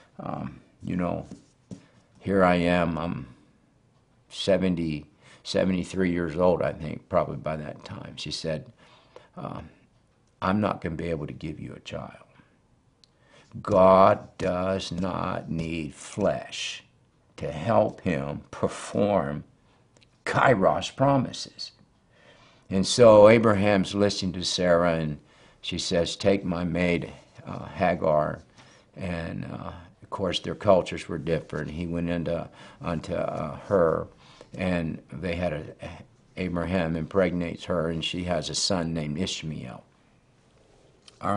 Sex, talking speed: male, 125 wpm